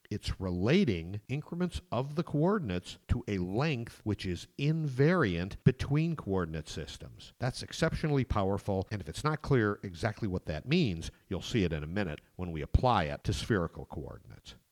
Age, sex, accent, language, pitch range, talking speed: 50-69, male, American, English, 85-125 Hz, 165 wpm